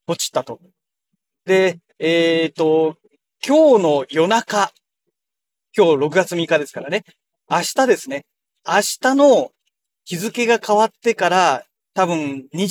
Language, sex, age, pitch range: Japanese, male, 40-59, 150-220 Hz